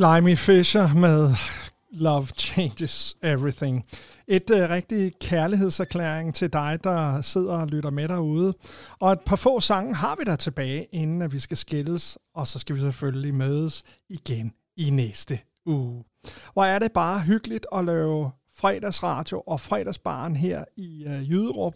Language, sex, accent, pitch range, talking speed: Danish, male, native, 145-195 Hz, 155 wpm